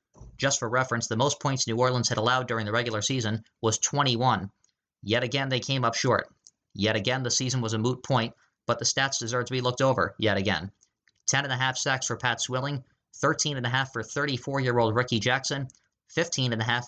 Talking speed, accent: 180 wpm, American